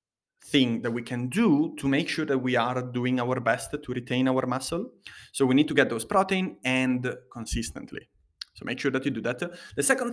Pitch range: 120-150 Hz